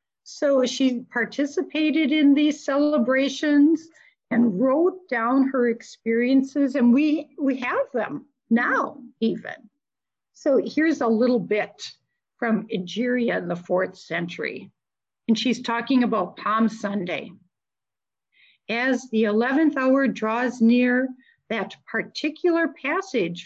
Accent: American